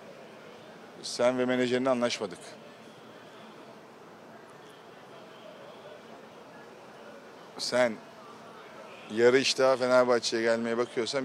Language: Turkish